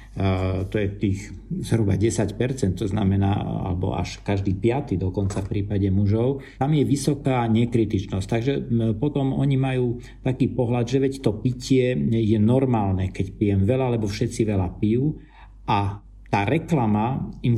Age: 50-69